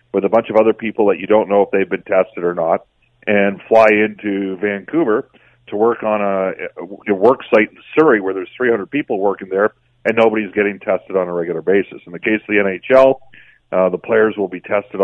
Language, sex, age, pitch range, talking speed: English, male, 40-59, 95-120 Hz, 220 wpm